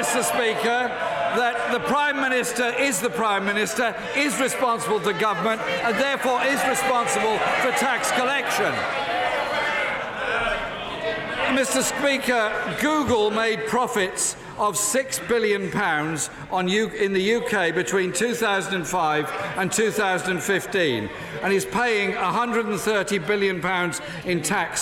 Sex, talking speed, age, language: male, 110 wpm, 50-69, English